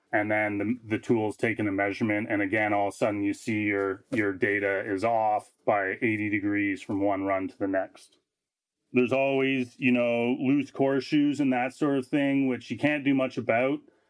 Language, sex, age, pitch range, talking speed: English, male, 30-49, 110-130 Hz, 205 wpm